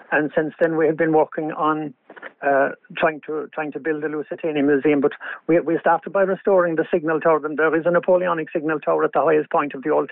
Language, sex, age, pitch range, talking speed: English, male, 50-69, 150-165 Hz, 235 wpm